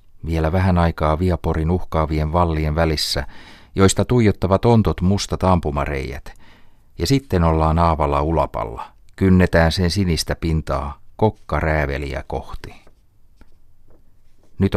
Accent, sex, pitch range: native, male, 75-100 Hz